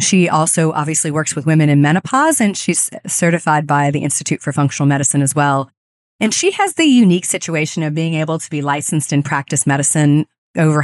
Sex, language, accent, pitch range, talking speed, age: female, English, American, 150-175 Hz, 195 wpm, 30-49